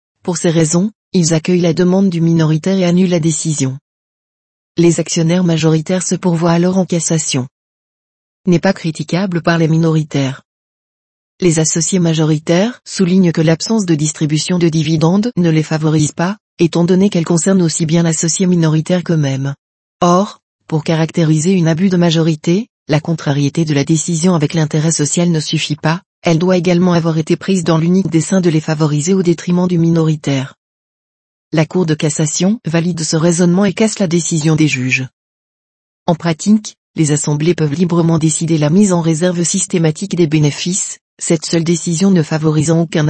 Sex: female